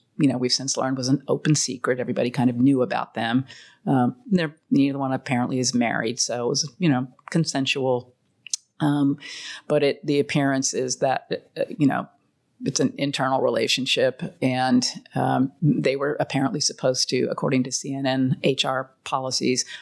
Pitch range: 125-145 Hz